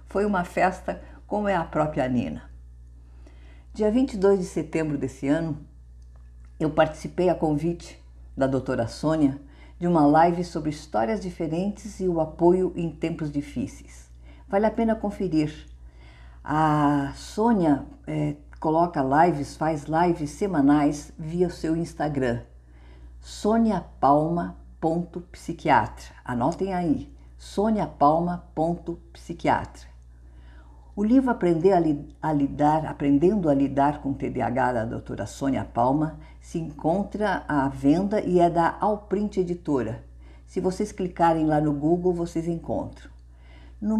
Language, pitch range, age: Portuguese, 120-175 Hz, 50-69